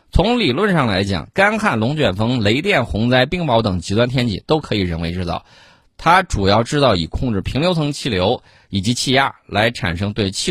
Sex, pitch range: male, 95-130 Hz